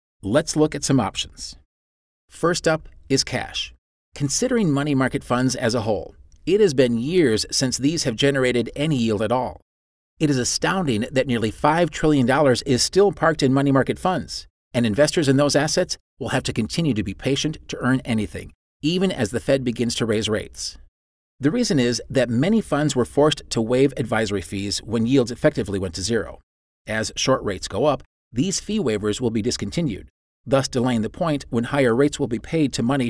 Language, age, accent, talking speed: English, 40-59, American, 190 wpm